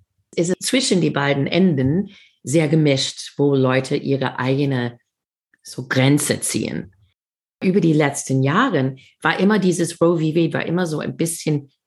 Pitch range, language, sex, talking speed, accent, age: 135-175 Hz, German, female, 145 wpm, German, 40-59